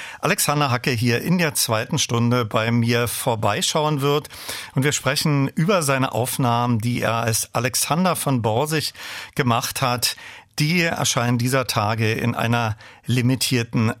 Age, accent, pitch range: 40-59, German, 120-150 Hz